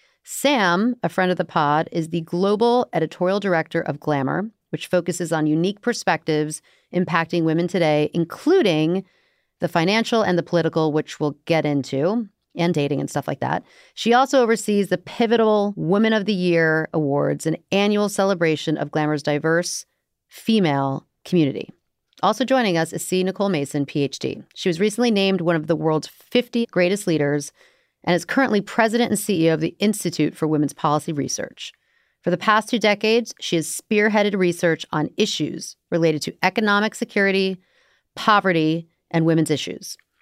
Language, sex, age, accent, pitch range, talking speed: English, female, 40-59, American, 160-210 Hz, 160 wpm